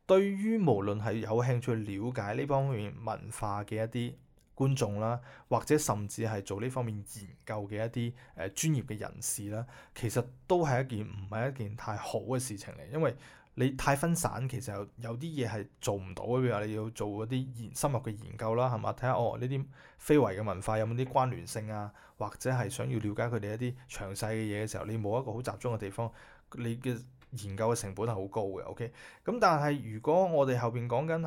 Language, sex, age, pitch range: Chinese, male, 20-39, 110-135 Hz